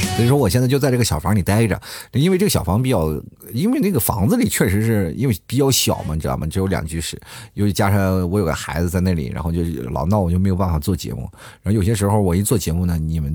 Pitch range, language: 85-115 Hz, Chinese